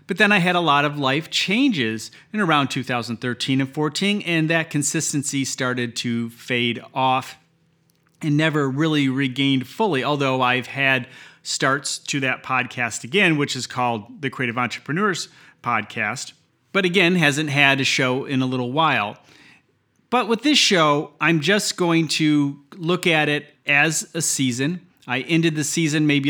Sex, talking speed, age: male, 160 wpm, 30-49